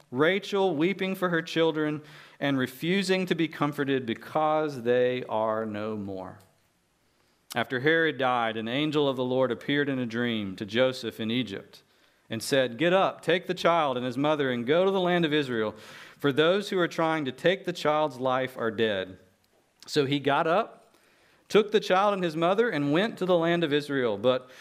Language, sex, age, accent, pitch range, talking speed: English, male, 40-59, American, 115-155 Hz, 190 wpm